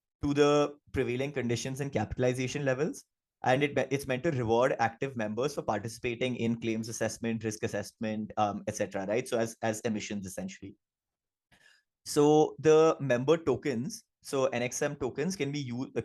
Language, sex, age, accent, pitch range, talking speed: English, male, 20-39, Indian, 110-140 Hz, 155 wpm